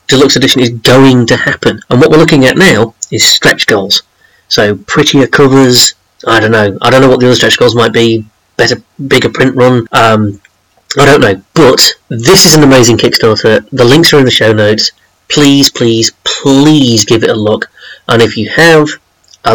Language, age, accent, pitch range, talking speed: English, 30-49, British, 115-135 Hz, 195 wpm